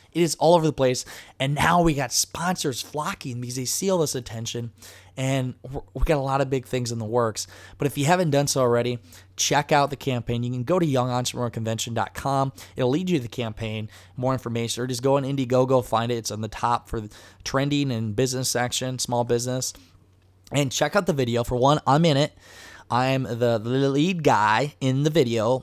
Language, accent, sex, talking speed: English, American, male, 210 wpm